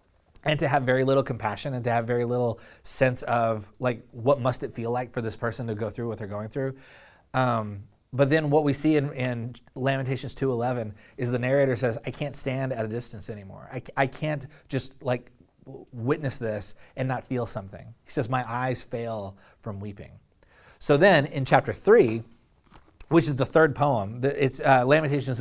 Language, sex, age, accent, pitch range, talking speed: English, male, 30-49, American, 115-140 Hz, 195 wpm